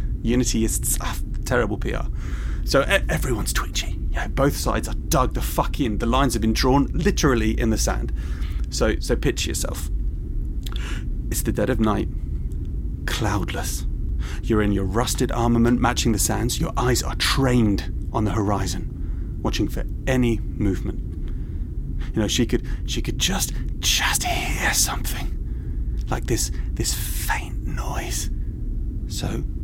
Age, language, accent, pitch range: 30-49, English, British, 80-120 Hz